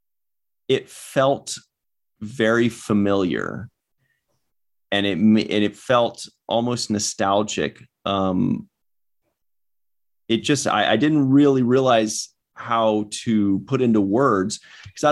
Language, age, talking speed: English, 30-49, 95 wpm